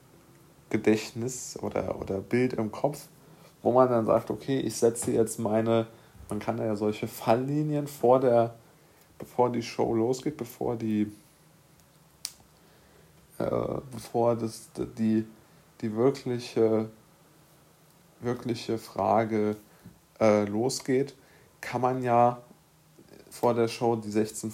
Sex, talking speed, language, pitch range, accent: male, 110 wpm, German, 105-120 Hz, German